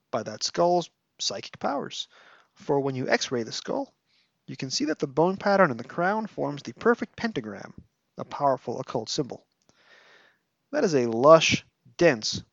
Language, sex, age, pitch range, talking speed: English, male, 30-49, 125-200 Hz, 165 wpm